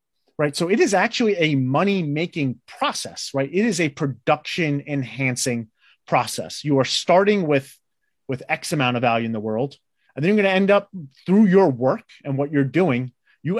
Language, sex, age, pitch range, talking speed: English, male, 30-49, 130-180 Hz, 185 wpm